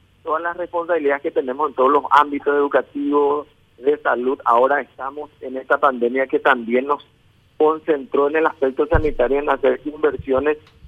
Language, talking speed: Spanish, 155 wpm